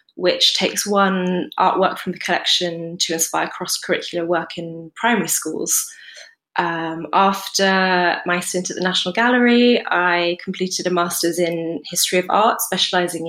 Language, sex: English, female